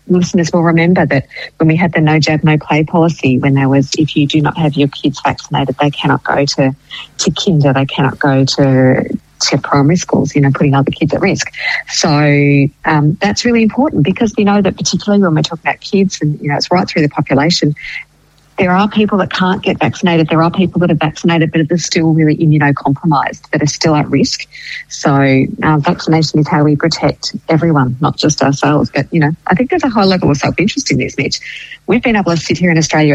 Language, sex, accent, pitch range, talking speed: English, female, Australian, 145-175 Hz, 225 wpm